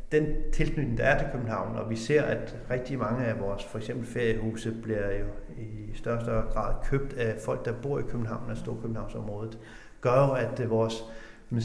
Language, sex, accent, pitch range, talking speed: Danish, male, native, 115-140 Hz, 200 wpm